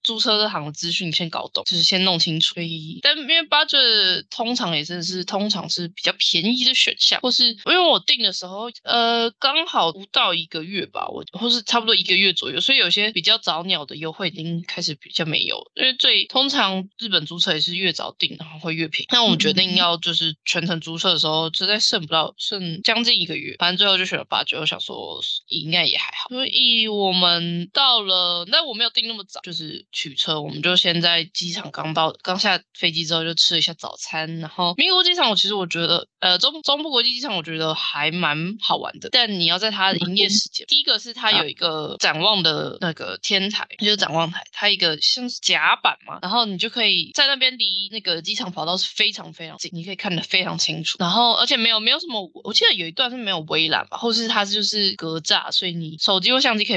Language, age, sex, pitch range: Chinese, 20-39, female, 170-230 Hz